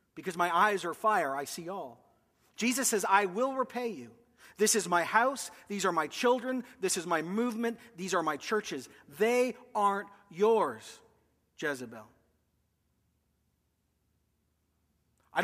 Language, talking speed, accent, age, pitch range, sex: English, 135 wpm, American, 40-59, 160-225 Hz, male